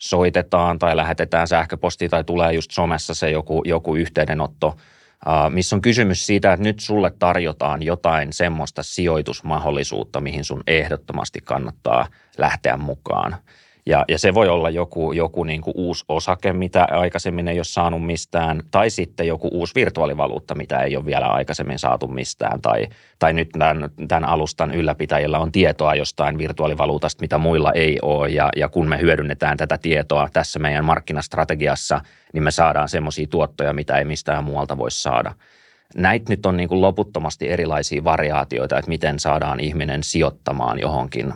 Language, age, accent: Finnish, 30-49, native